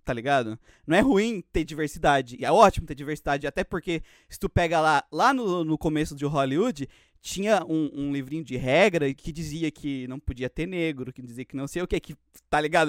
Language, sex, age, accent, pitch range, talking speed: Portuguese, male, 20-39, Brazilian, 135-200 Hz, 220 wpm